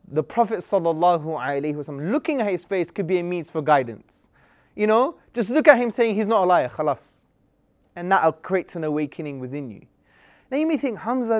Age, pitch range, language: 20-39, 160-220 Hz, English